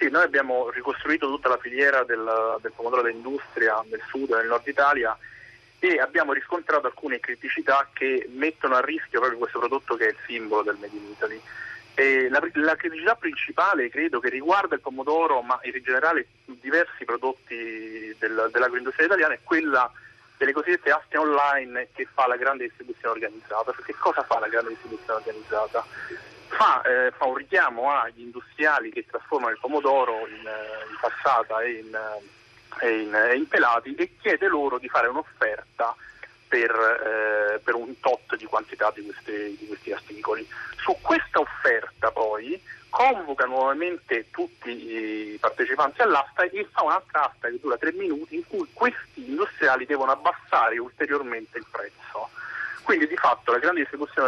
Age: 30-49